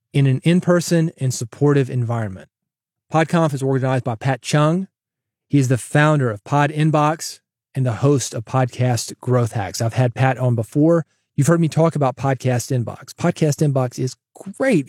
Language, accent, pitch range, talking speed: English, American, 125-160 Hz, 175 wpm